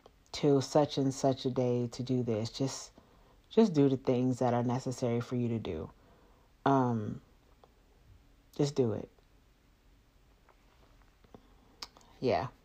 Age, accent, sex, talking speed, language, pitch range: 40-59, American, female, 125 wpm, English, 130-160 Hz